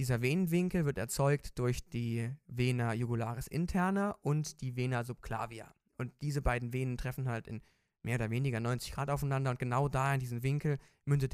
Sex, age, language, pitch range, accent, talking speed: male, 20-39, German, 120-150 Hz, German, 175 wpm